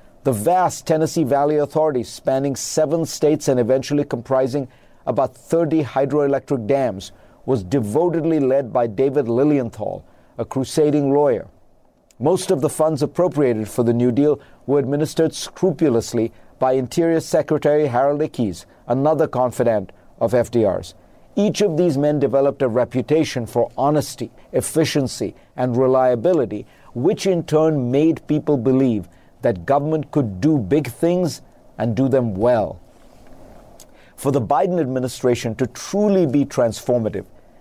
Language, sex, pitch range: English, male, 125-155 Hz